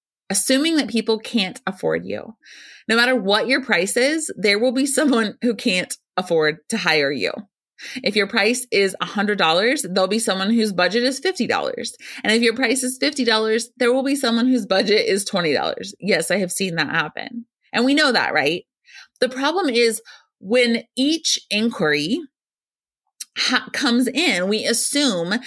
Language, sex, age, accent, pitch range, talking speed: English, female, 30-49, American, 180-245 Hz, 175 wpm